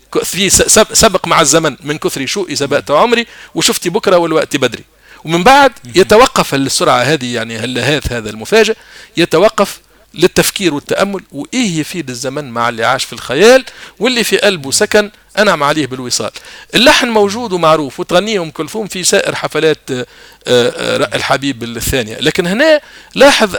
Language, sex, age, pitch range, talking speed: Arabic, male, 50-69, 135-200 Hz, 135 wpm